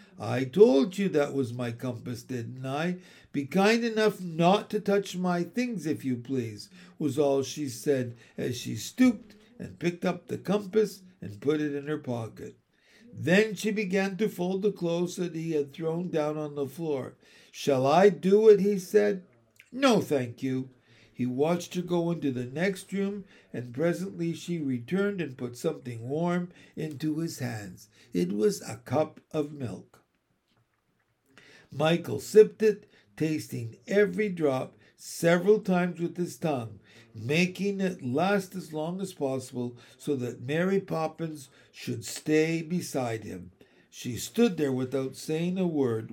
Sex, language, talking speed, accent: male, English, 155 wpm, American